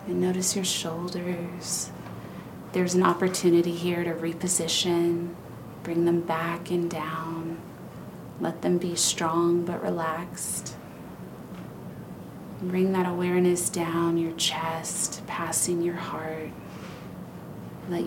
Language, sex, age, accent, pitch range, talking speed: English, female, 30-49, American, 165-180 Hz, 105 wpm